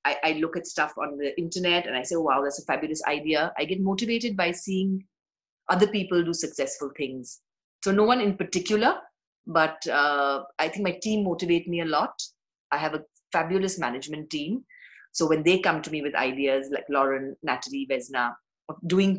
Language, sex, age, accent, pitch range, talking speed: English, female, 30-49, Indian, 145-185 Hz, 185 wpm